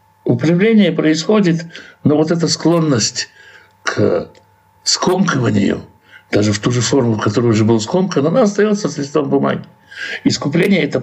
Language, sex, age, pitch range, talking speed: Russian, male, 60-79, 110-160 Hz, 130 wpm